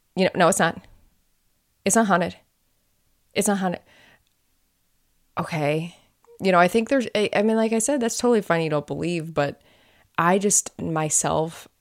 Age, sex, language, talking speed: 20-39, female, English, 170 wpm